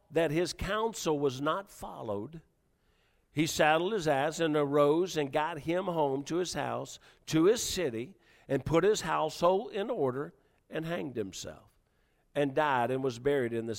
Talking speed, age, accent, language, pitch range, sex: 165 wpm, 50-69, American, English, 130-175 Hz, male